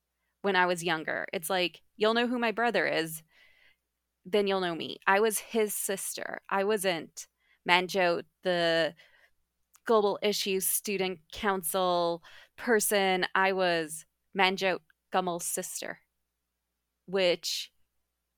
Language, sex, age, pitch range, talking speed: English, female, 20-39, 165-210 Hz, 115 wpm